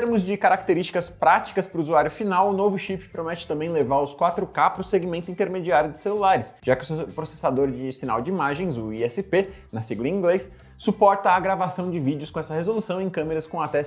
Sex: male